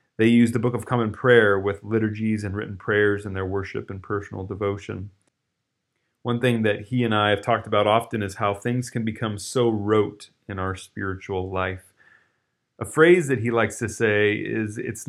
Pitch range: 105-125 Hz